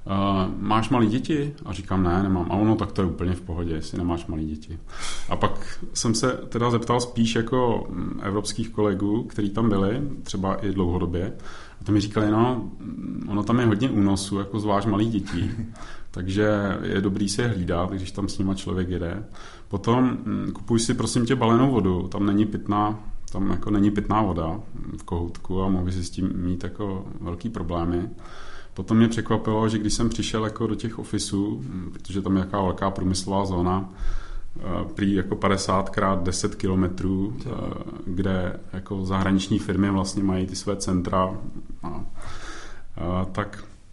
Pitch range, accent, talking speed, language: 95-110 Hz, native, 165 wpm, Czech